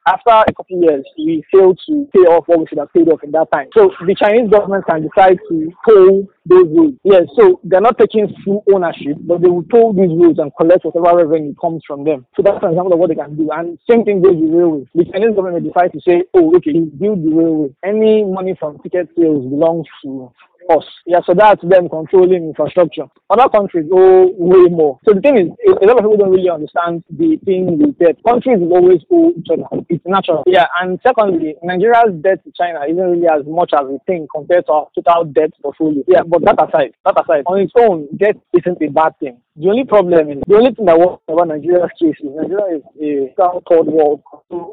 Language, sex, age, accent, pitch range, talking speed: English, male, 20-39, Nigerian, 160-200 Hz, 230 wpm